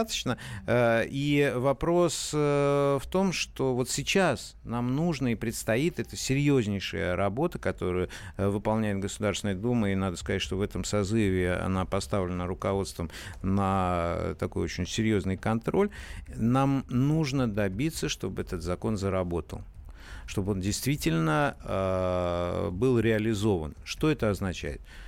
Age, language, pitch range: 50-69, Russian, 90-115 Hz